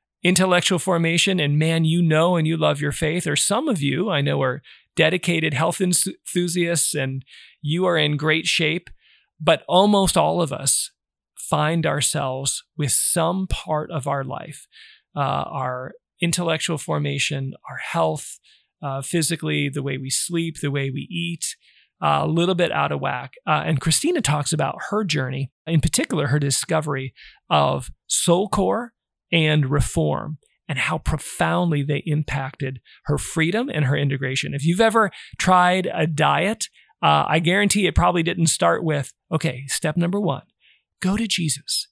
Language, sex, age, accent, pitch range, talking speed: English, male, 40-59, American, 145-175 Hz, 155 wpm